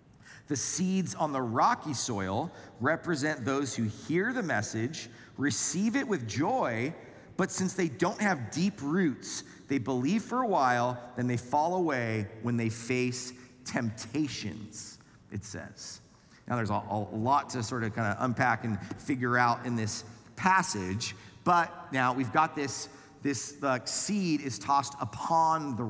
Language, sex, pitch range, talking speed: English, male, 110-140 Hz, 155 wpm